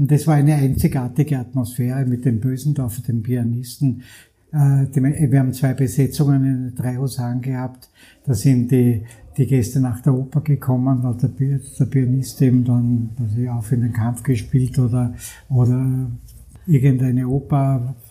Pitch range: 125-145 Hz